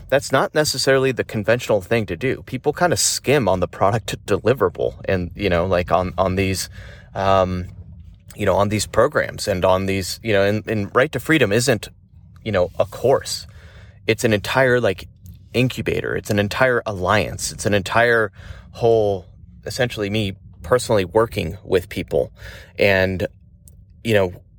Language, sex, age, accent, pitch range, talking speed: English, male, 30-49, American, 95-115 Hz, 160 wpm